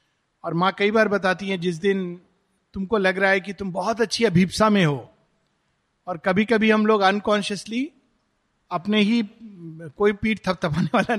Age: 50-69